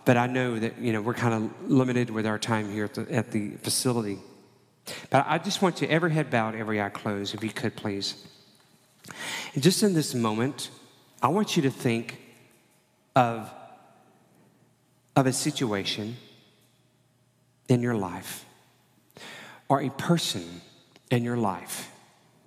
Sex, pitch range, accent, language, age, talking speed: male, 105-130 Hz, American, English, 40-59, 145 wpm